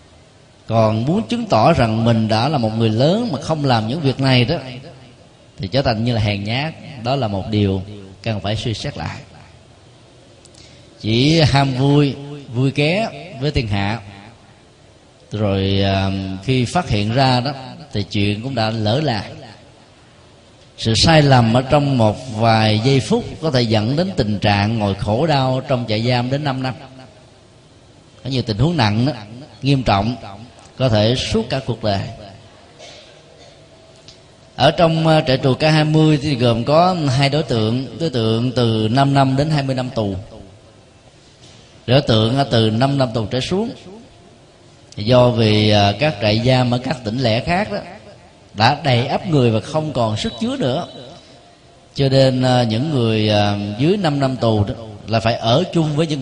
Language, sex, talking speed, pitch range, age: Vietnamese, male, 165 wpm, 110-135 Hz, 20-39